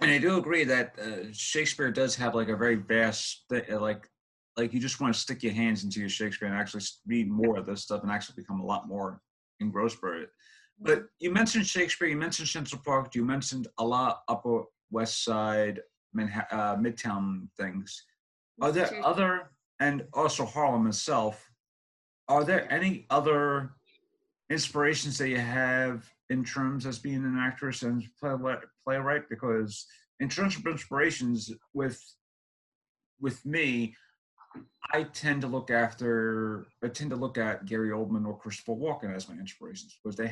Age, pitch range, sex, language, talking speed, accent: 30-49, 110-145 Hz, male, English, 165 wpm, American